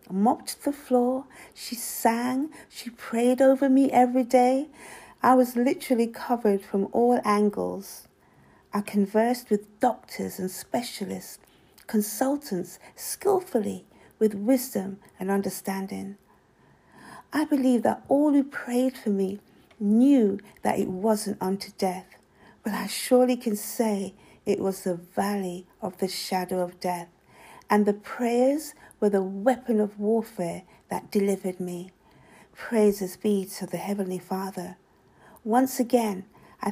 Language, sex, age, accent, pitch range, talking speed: English, female, 50-69, British, 195-250 Hz, 130 wpm